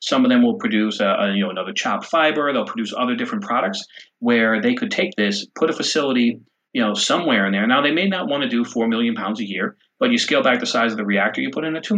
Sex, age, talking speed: male, 30-49, 280 wpm